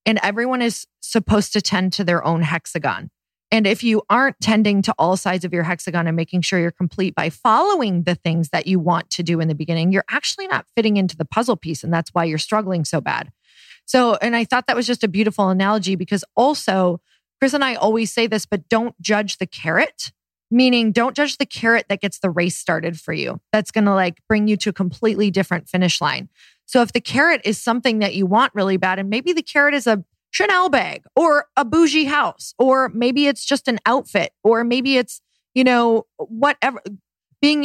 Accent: American